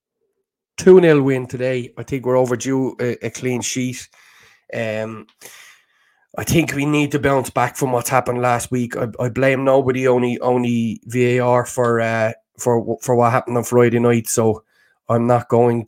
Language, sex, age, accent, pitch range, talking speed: English, male, 20-39, Irish, 115-140 Hz, 165 wpm